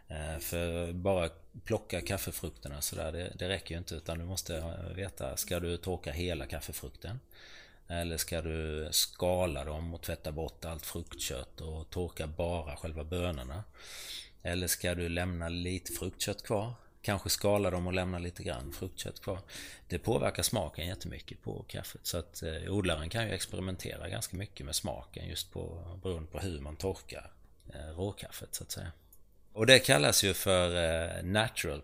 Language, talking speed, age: Swedish, 160 wpm, 30-49